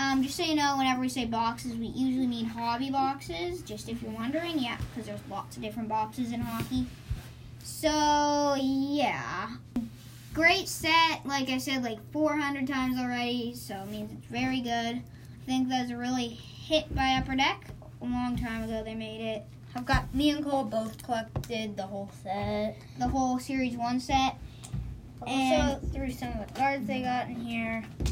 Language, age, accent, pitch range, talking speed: English, 10-29, American, 230-280 Hz, 180 wpm